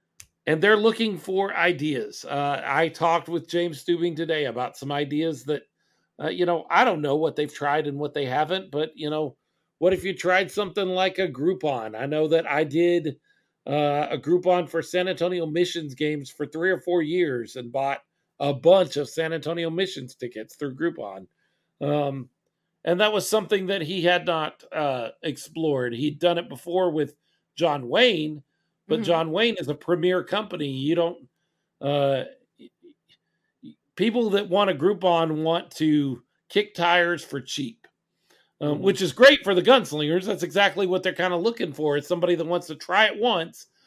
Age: 50-69